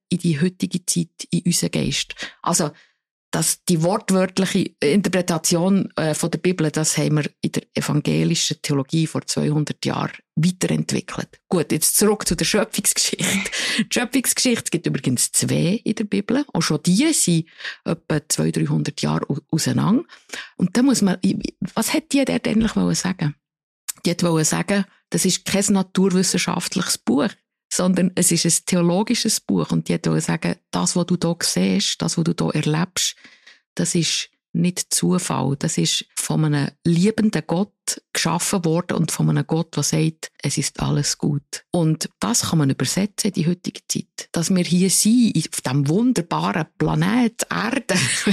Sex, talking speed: female, 165 wpm